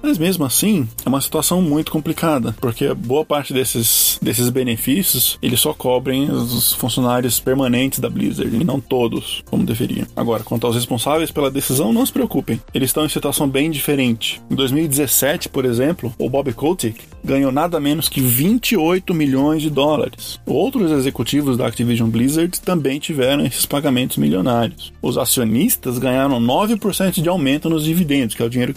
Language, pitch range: Portuguese, 125-160 Hz